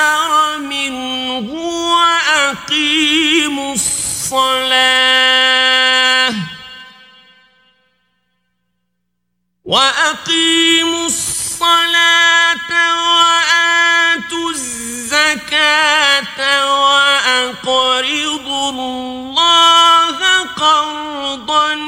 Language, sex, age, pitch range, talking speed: Persian, male, 50-69, 255-310 Hz, 35 wpm